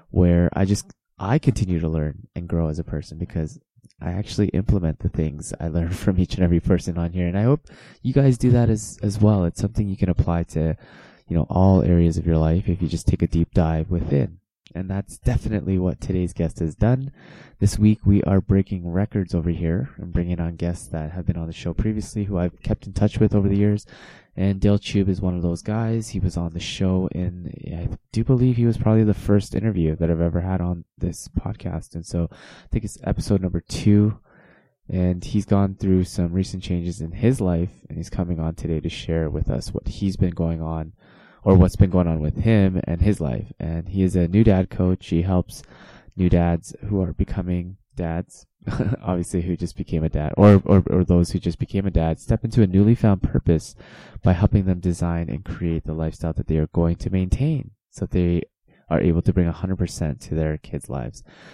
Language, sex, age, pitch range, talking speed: English, male, 20-39, 85-105 Hz, 225 wpm